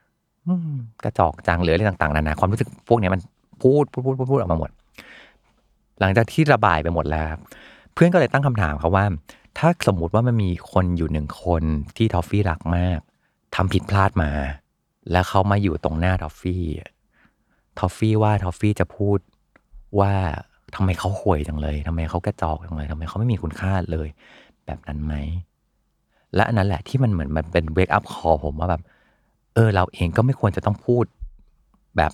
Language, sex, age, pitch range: Thai, male, 30-49, 80-105 Hz